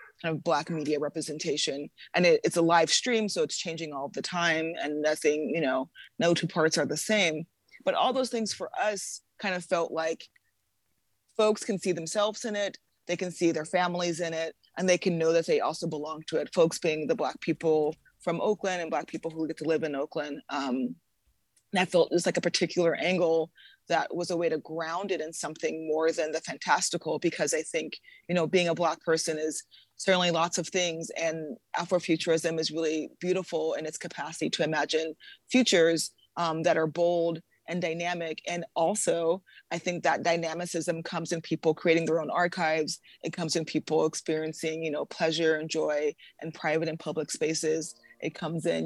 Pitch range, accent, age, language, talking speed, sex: 160-175 Hz, American, 20-39, English, 195 wpm, female